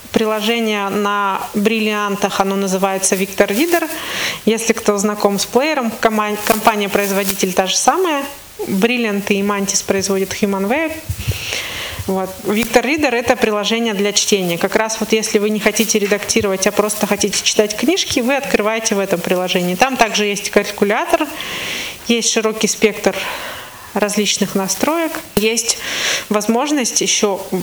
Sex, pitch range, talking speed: female, 205-235 Hz, 130 wpm